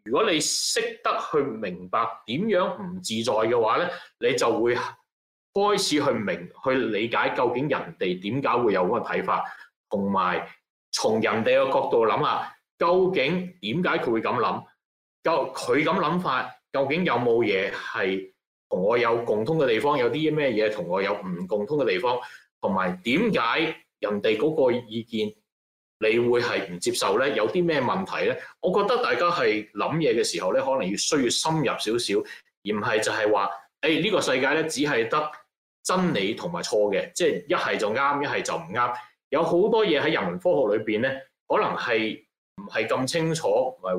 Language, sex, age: Chinese, male, 30-49